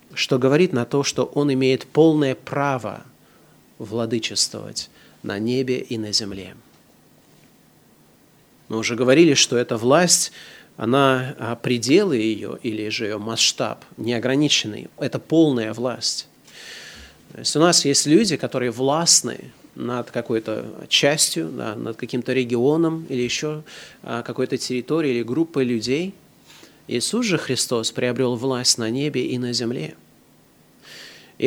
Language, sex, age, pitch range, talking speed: Russian, male, 30-49, 120-150 Hz, 120 wpm